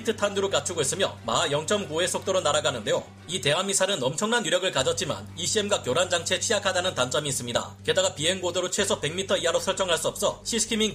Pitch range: 145-205 Hz